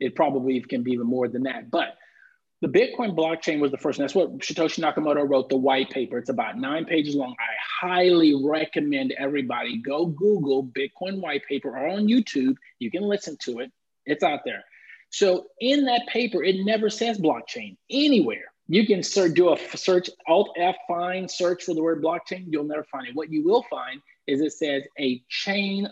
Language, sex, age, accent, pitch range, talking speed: English, male, 30-49, American, 150-215 Hz, 195 wpm